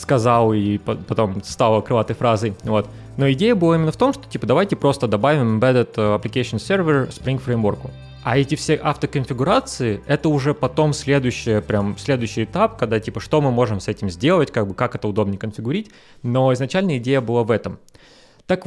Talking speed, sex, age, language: 175 wpm, male, 20-39, Russian